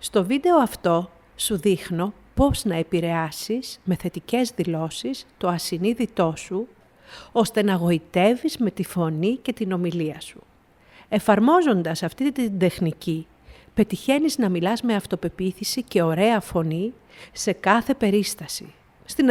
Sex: female